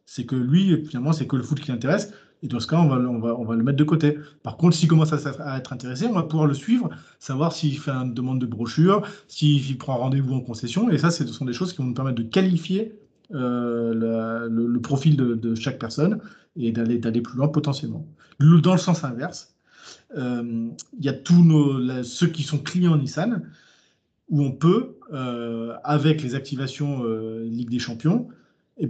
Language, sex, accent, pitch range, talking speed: French, male, French, 125-160 Hz, 215 wpm